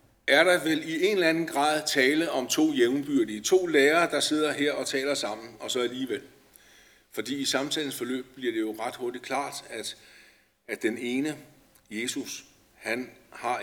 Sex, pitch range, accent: male, 135-170 Hz, native